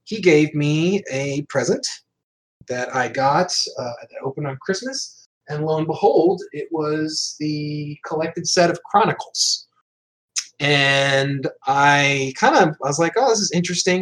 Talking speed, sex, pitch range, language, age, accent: 150 wpm, male, 130-165 Hz, English, 20-39, American